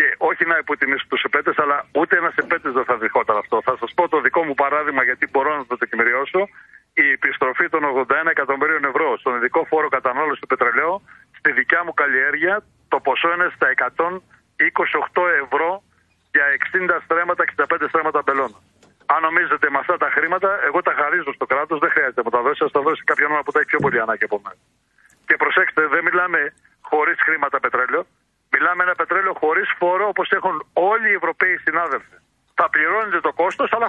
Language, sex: Greek, male